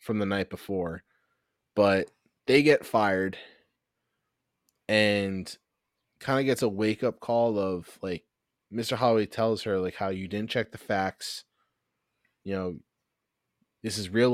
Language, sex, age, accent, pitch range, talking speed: English, male, 20-39, American, 95-115 Hz, 140 wpm